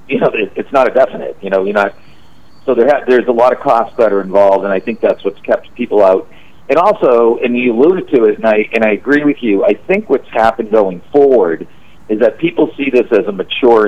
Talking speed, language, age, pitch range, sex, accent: 235 wpm, English, 50-69, 100-130 Hz, male, American